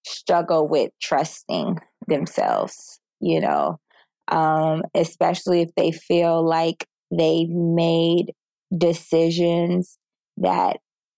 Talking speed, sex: 85 wpm, female